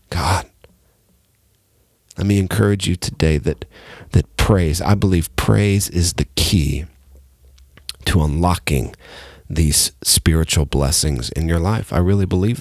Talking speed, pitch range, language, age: 125 wpm, 80-105 Hz, English, 40-59